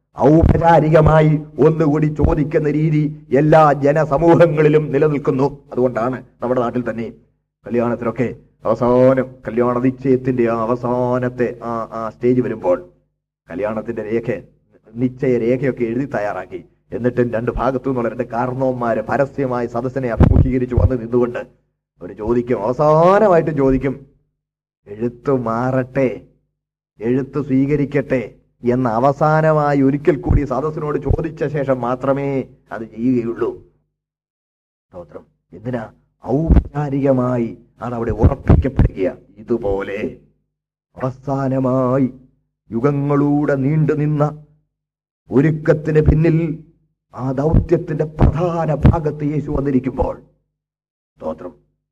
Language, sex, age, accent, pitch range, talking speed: Malayalam, male, 30-49, native, 120-150 Hz, 90 wpm